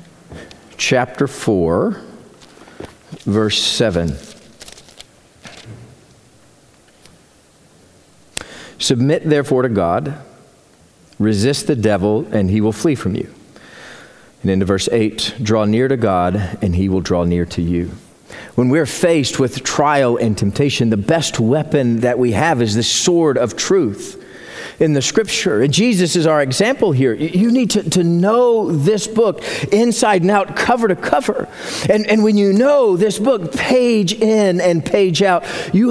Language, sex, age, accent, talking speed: English, male, 40-59, American, 140 wpm